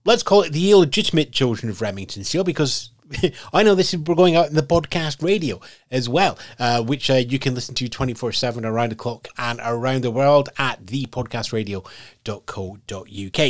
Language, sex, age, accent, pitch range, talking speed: English, male, 30-49, British, 115-155 Hz, 180 wpm